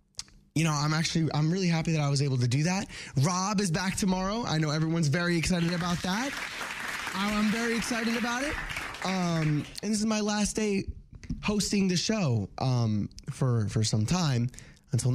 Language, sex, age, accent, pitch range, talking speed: English, male, 20-39, American, 120-185 Hz, 180 wpm